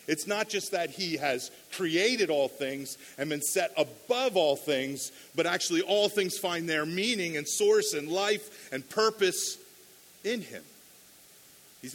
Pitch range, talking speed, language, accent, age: 130-185 Hz, 155 wpm, English, American, 40-59